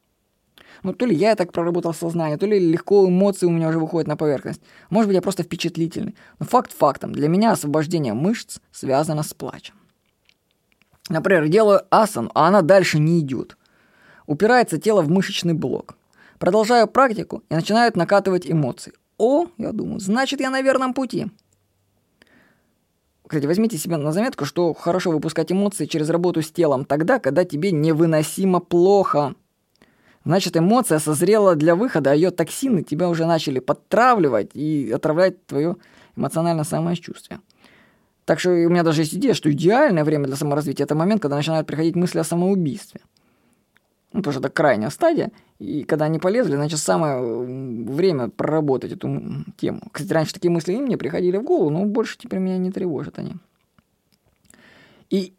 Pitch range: 155-200 Hz